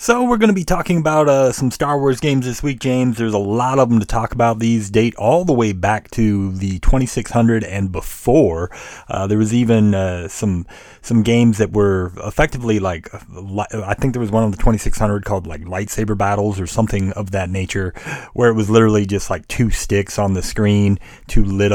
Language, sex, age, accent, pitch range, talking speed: English, male, 30-49, American, 95-115 Hz, 210 wpm